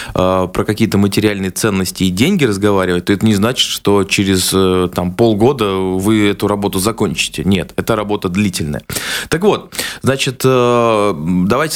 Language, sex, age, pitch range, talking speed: Russian, male, 20-39, 100-125 Hz, 135 wpm